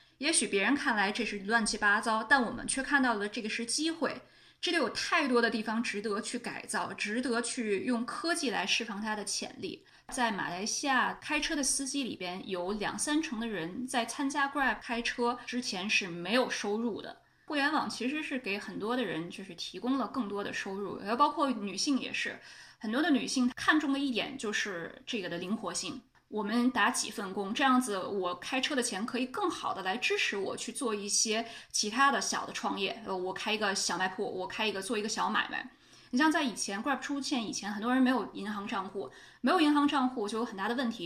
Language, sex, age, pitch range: Chinese, female, 20-39, 205-275 Hz